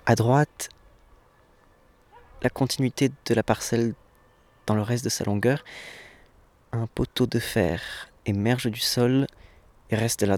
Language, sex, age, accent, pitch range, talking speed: French, male, 20-39, French, 100-125 Hz, 140 wpm